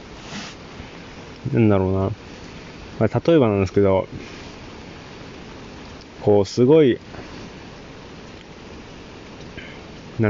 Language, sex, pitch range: Japanese, male, 105-120 Hz